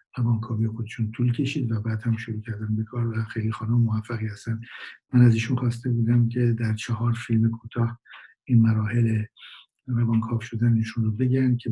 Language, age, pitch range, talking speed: Persian, 50-69, 110-120 Hz, 180 wpm